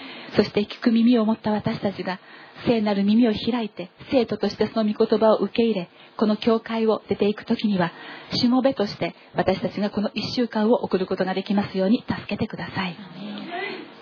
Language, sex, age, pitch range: Japanese, female, 40-59, 200-225 Hz